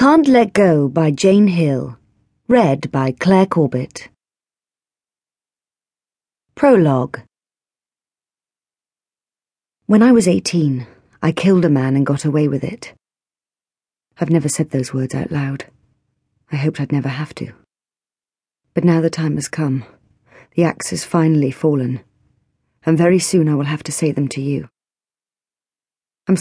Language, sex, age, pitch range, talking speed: English, female, 40-59, 140-175 Hz, 135 wpm